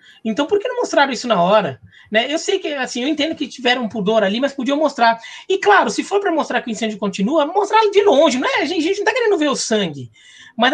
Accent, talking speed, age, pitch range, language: Brazilian, 270 wpm, 20-39, 215-315 Hz, Portuguese